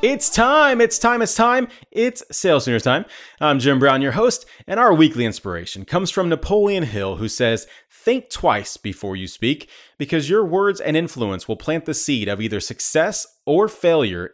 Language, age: English, 30-49